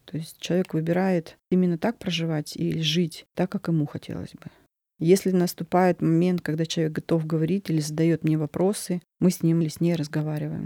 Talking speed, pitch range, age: 180 wpm, 160-185 Hz, 30-49